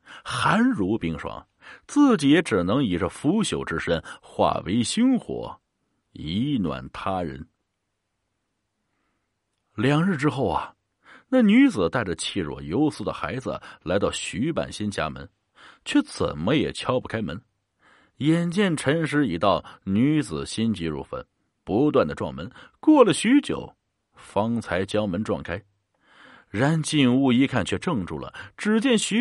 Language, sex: Chinese, male